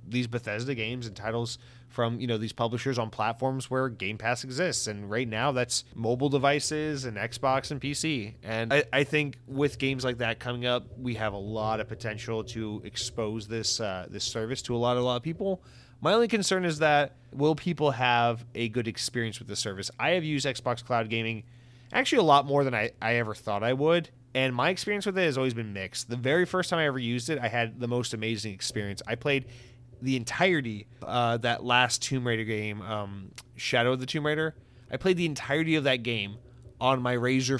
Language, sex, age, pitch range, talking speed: English, male, 30-49, 115-135 Hz, 215 wpm